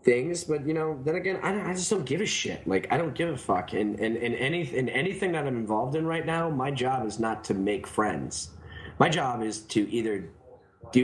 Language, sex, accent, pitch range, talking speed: English, male, American, 105-130 Hz, 245 wpm